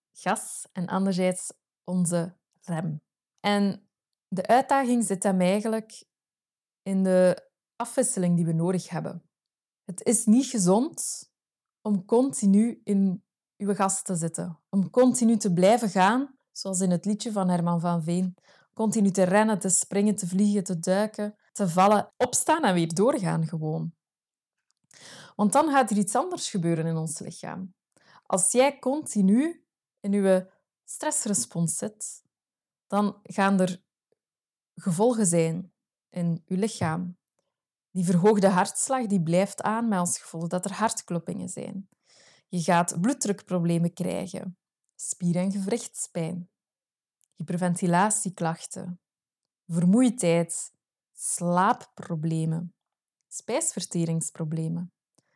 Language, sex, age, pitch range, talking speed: Dutch, female, 20-39, 175-210 Hz, 115 wpm